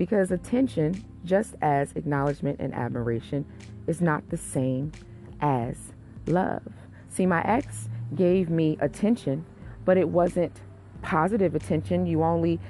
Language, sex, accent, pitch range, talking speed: English, female, American, 140-190 Hz, 125 wpm